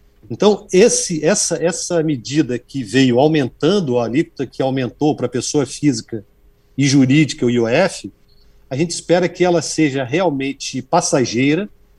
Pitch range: 135-175 Hz